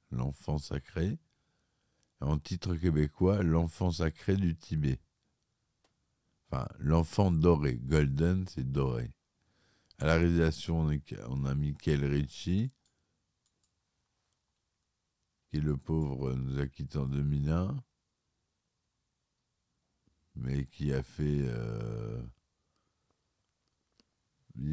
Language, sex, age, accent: French, male, 50-69, French